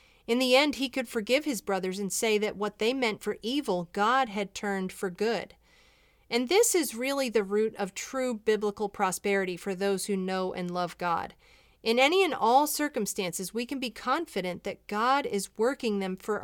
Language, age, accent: English, 30-49, American